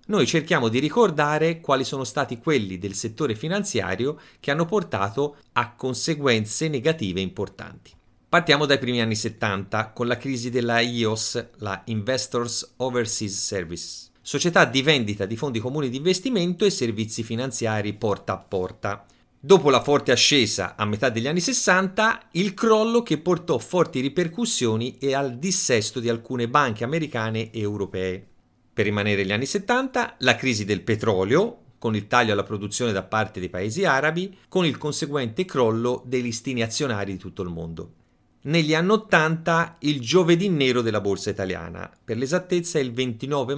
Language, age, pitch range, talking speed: Italian, 30-49, 105-150 Hz, 155 wpm